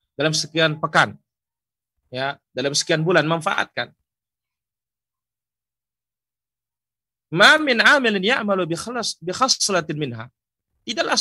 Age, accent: 40-59, native